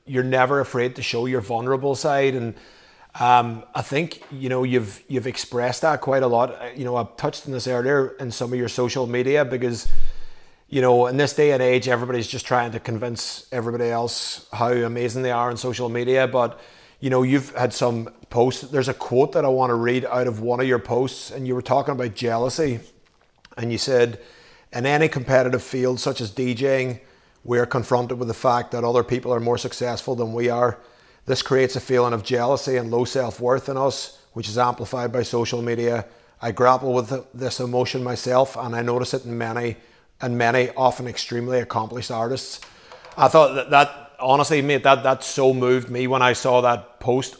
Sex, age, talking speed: male, 30-49, 200 wpm